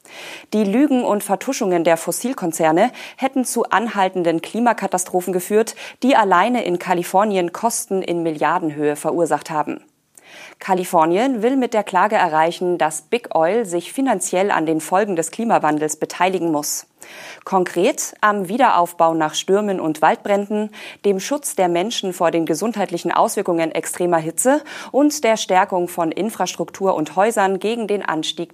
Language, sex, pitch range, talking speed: German, female, 165-220 Hz, 135 wpm